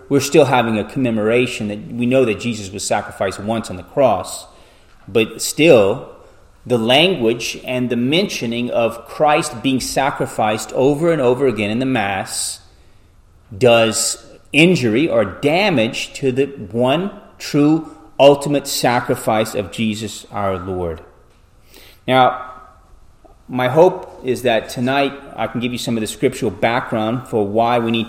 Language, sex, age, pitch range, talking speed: English, male, 30-49, 105-130 Hz, 145 wpm